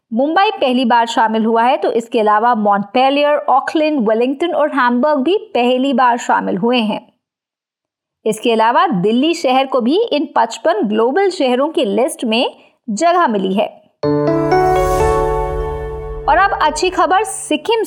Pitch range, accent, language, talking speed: 230-330 Hz, native, Hindi, 140 wpm